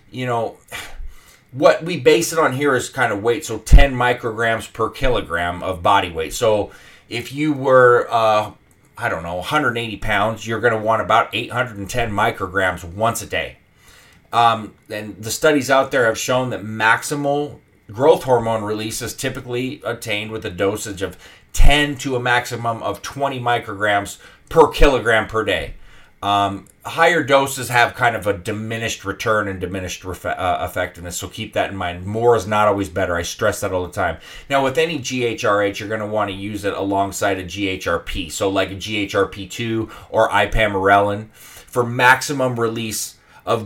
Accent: American